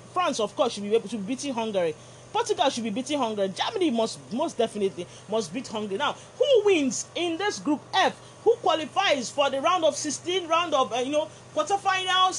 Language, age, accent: English, 30-49, Nigerian